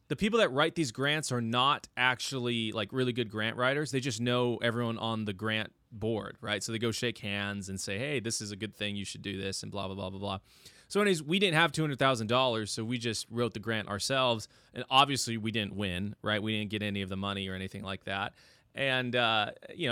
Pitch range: 105-140 Hz